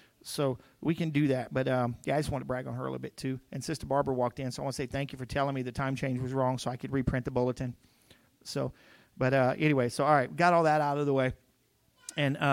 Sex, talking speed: male, 285 wpm